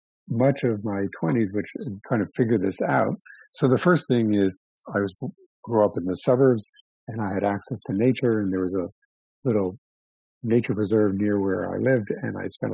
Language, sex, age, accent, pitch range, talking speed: English, male, 50-69, American, 95-120 Hz, 200 wpm